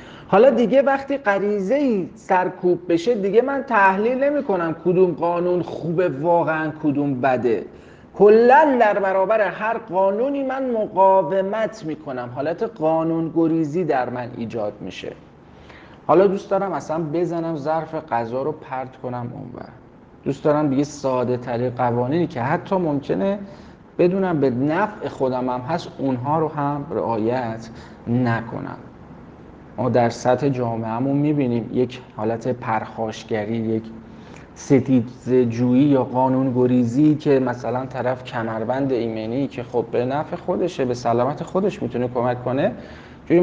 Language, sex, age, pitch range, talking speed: Persian, male, 40-59, 125-175 Hz, 130 wpm